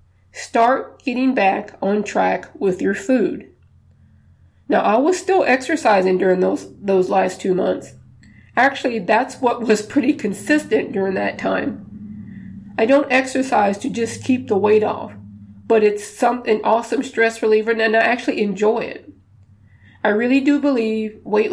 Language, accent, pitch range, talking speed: English, American, 190-250 Hz, 150 wpm